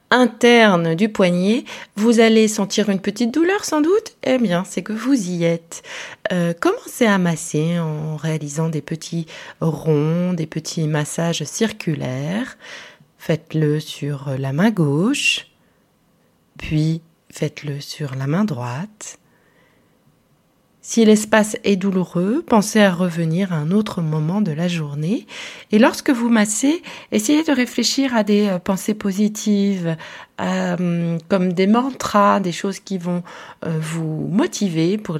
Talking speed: 135 wpm